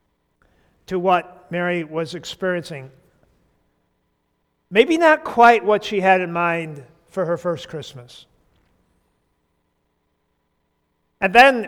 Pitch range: 185-230 Hz